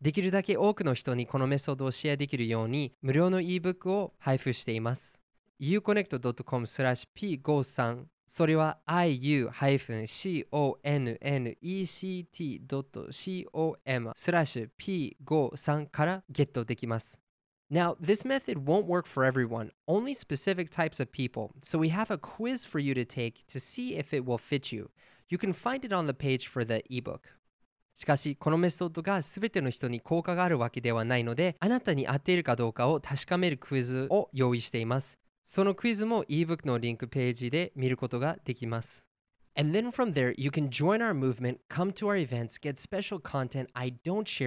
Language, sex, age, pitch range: Japanese, male, 20-39, 125-175 Hz